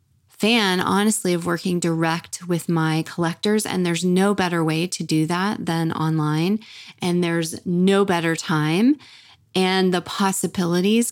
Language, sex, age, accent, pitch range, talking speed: English, female, 20-39, American, 180-225 Hz, 140 wpm